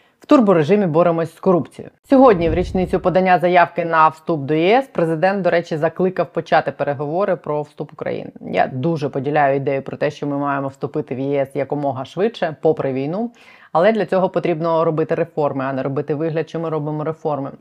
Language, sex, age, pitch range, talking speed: Ukrainian, female, 30-49, 150-185 Hz, 180 wpm